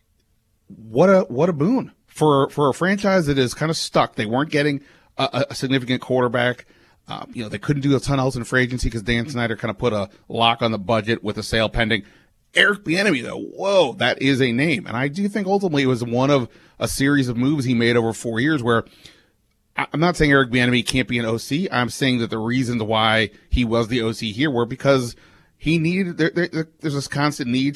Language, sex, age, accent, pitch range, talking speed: English, male, 30-49, American, 115-145 Hz, 225 wpm